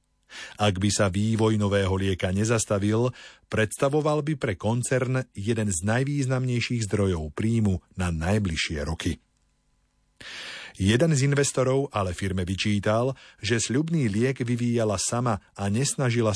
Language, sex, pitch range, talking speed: Slovak, male, 95-125 Hz, 115 wpm